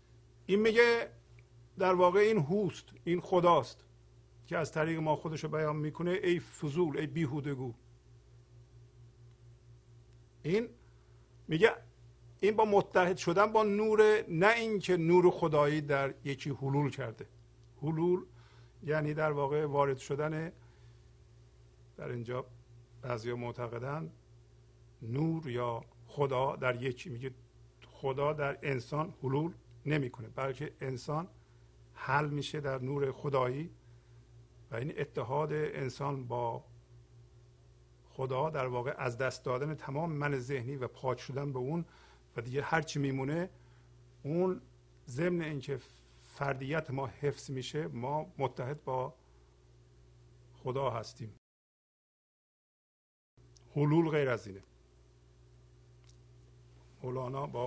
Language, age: Persian, 50-69